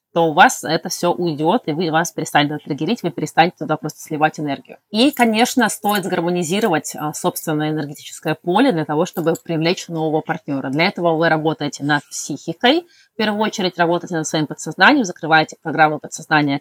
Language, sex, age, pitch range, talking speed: Russian, female, 20-39, 155-185 Hz, 165 wpm